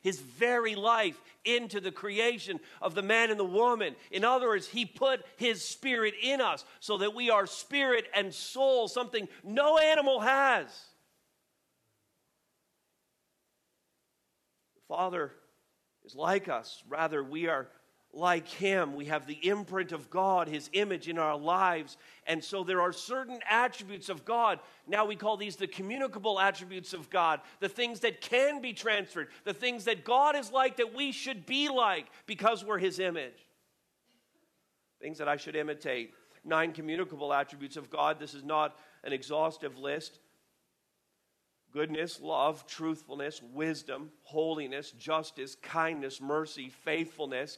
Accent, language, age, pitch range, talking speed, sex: American, English, 50-69, 155-230 Hz, 145 wpm, male